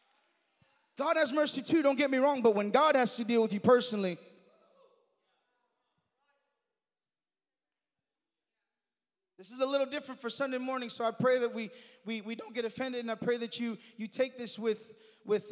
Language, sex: English, male